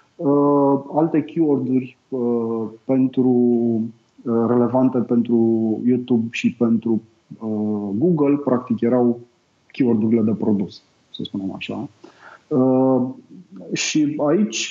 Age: 30-49